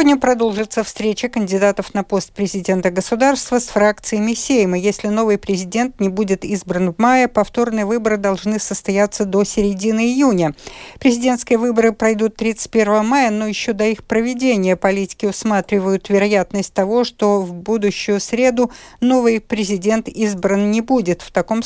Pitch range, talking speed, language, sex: 190-230 Hz, 140 wpm, Russian, female